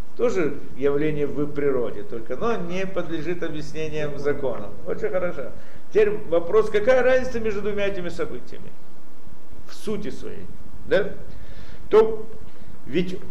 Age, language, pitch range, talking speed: 50-69, Russian, 125-175 Hz, 115 wpm